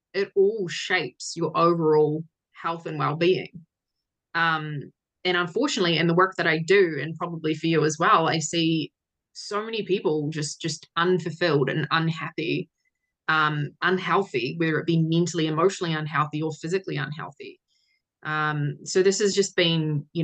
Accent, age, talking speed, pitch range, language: Australian, 20-39, 150 wpm, 150-180 Hz, English